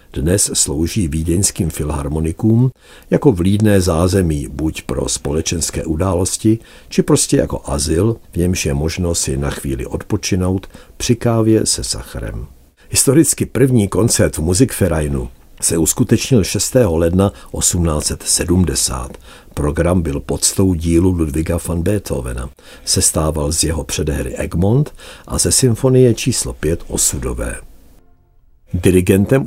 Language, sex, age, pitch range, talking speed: Czech, male, 60-79, 80-105 Hz, 110 wpm